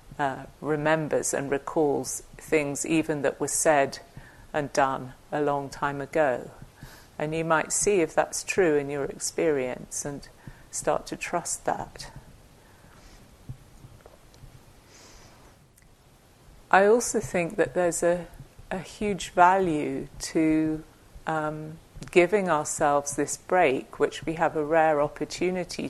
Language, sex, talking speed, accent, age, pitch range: English, female, 120 wpm, British, 50-69, 135-165 Hz